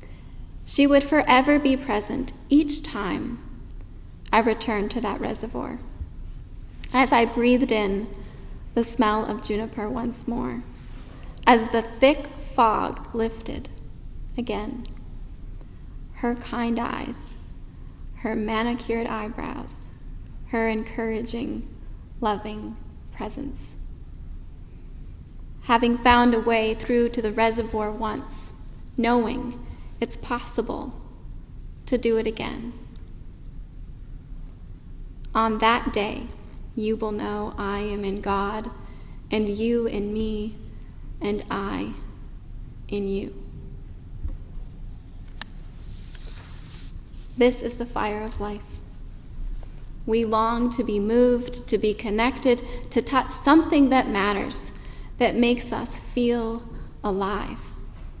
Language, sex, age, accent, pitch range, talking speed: English, female, 10-29, American, 205-240 Hz, 100 wpm